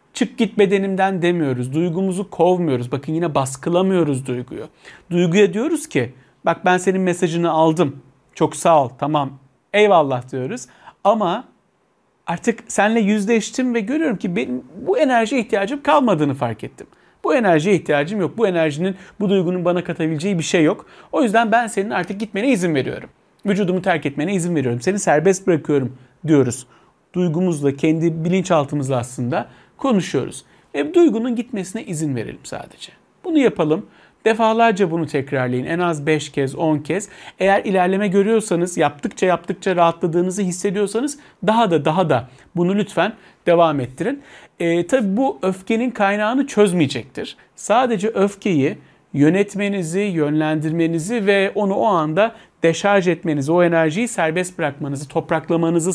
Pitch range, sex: 155-205 Hz, male